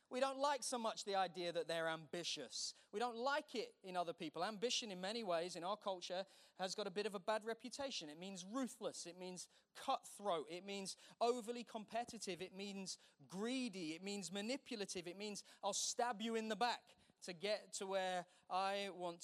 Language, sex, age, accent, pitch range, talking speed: English, male, 30-49, British, 175-215 Hz, 195 wpm